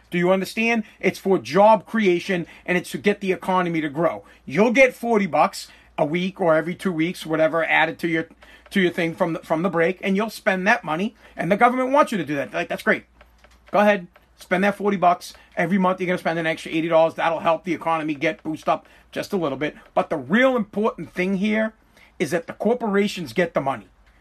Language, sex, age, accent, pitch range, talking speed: English, male, 40-59, American, 175-215 Hz, 230 wpm